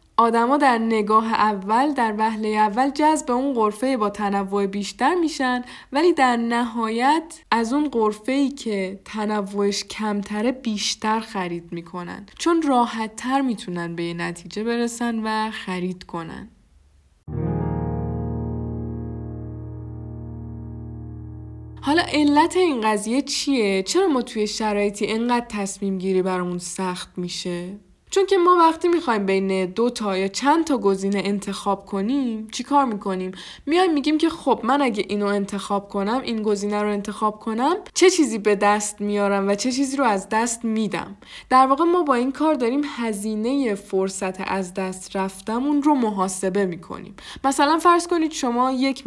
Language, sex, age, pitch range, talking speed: Persian, female, 10-29, 200-270 Hz, 140 wpm